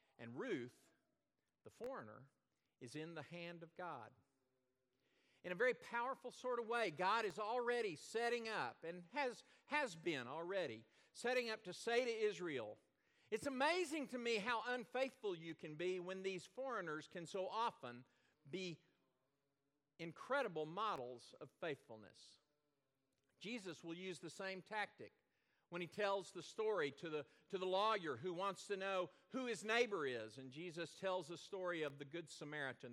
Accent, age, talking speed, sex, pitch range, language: American, 50-69, 155 wpm, male, 155-230 Hz, English